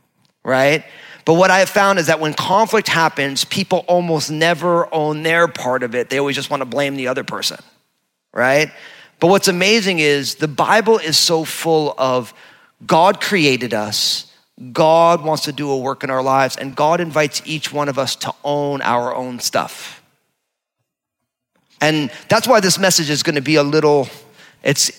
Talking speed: 180 wpm